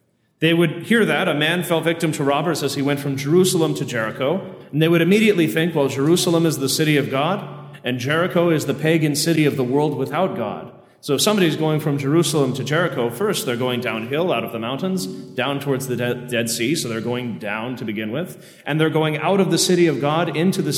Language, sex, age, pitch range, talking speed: English, male, 30-49, 135-165 Hz, 230 wpm